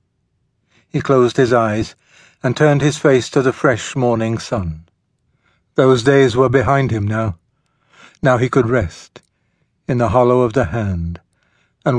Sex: male